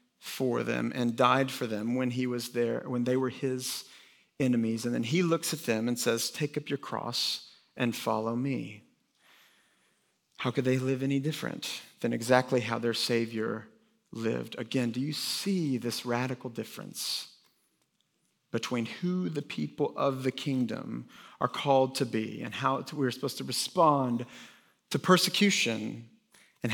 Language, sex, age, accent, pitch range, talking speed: English, male, 40-59, American, 120-145 Hz, 155 wpm